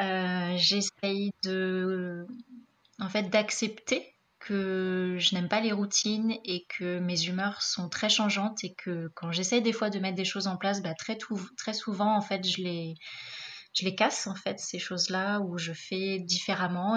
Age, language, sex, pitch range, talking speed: 20-39, French, female, 180-215 Hz, 180 wpm